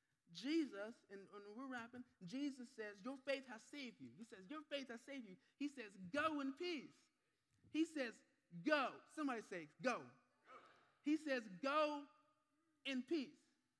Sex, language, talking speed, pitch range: male, English, 150 wpm, 190-250 Hz